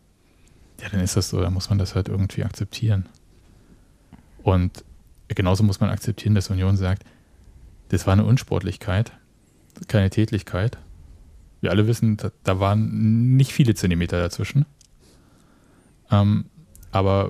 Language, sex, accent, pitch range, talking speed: German, male, German, 90-110 Hz, 125 wpm